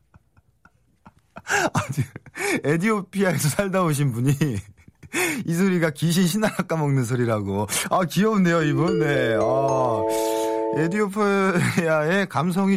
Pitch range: 125-195 Hz